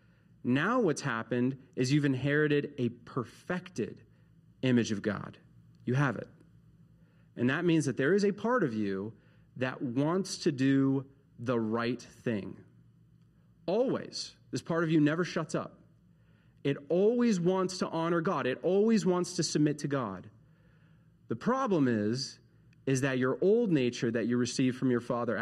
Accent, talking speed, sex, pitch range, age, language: American, 155 wpm, male, 110-145 Hz, 30-49, English